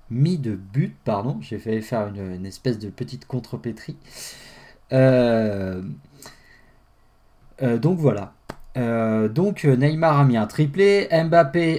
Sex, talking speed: male, 125 wpm